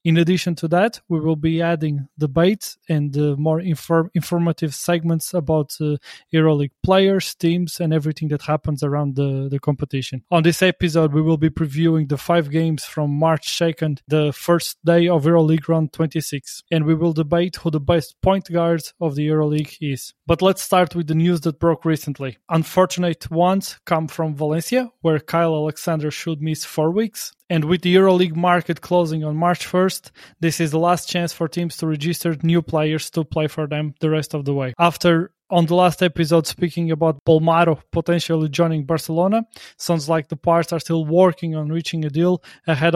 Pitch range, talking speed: 155-170 Hz, 185 wpm